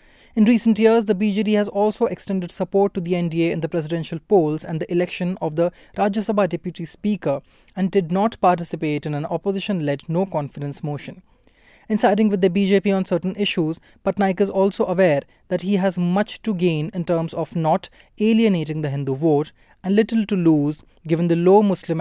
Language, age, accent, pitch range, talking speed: English, 20-39, Indian, 160-200 Hz, 185 wpm